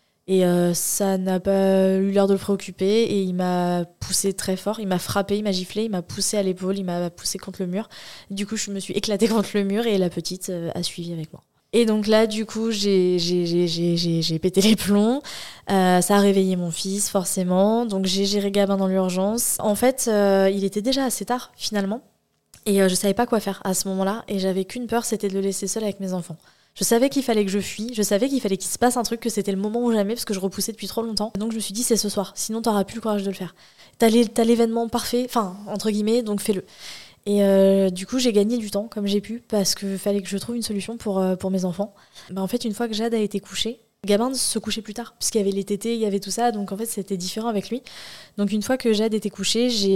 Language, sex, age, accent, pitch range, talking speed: French, female, 20-39, French, 190-220 Hz, 275 wpm